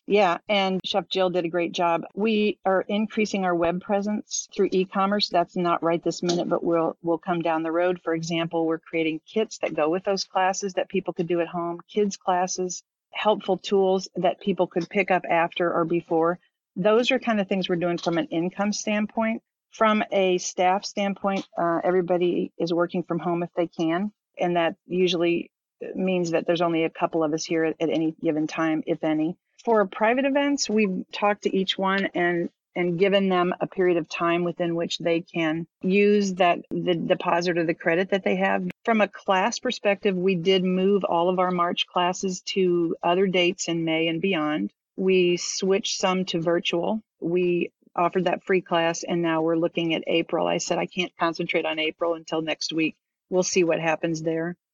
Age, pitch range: 40-59, 170-195 Hz